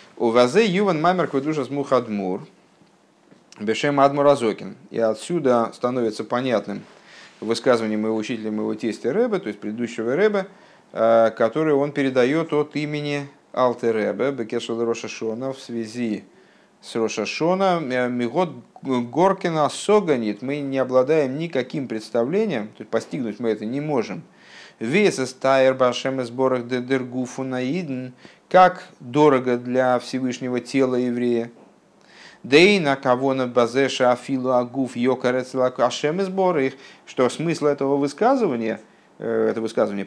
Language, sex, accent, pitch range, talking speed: Russian, male, native, 115-145 Hz, 115 wpm